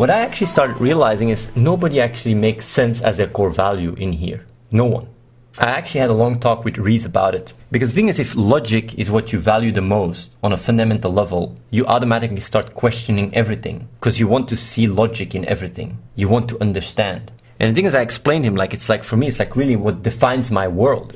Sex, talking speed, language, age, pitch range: male, 225 wpm, English, 30-49, 105-125 Hz